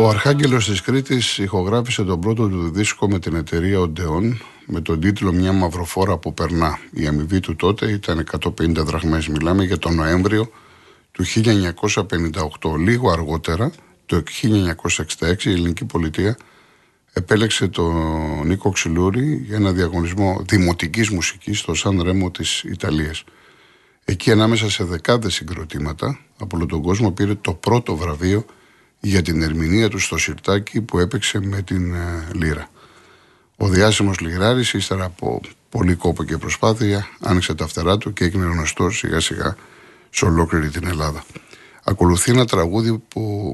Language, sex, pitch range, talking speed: Greek, male, 80-105 Hz, 145 wpm